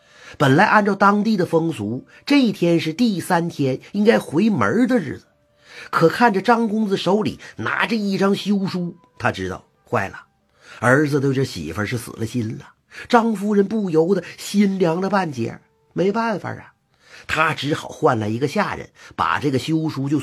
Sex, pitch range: male, 155-225 Hz